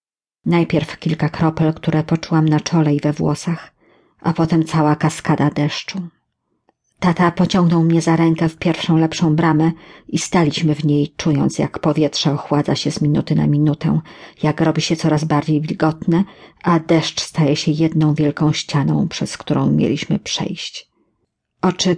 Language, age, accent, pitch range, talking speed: English, 40-59, Polish, 155-180 Hz, 150 wpm